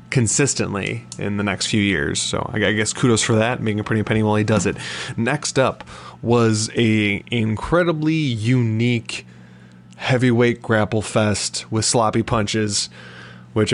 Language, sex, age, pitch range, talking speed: English, male, 20-39, 100-115 Hz, 145 wpm